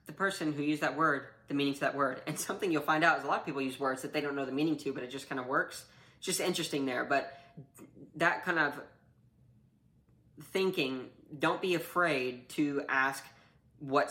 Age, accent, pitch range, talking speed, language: 10-29, American, 135-160 Hz, 215 wpm, English